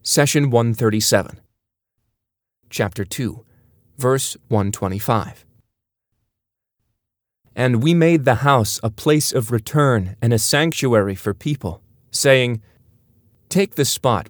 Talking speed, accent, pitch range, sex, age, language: 100 wpm, American, 105-125 Hz, male, 30-49, English